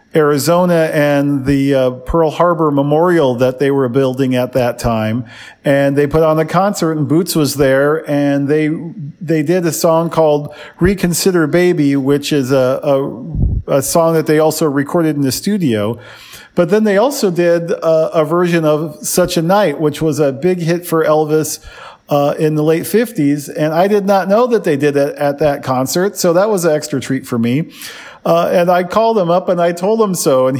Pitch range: 140-175 Hz